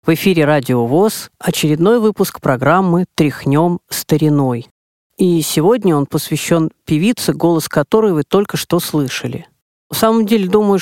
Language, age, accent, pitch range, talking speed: Russian, 40-59, native, 150-185 Hz, 135 wpm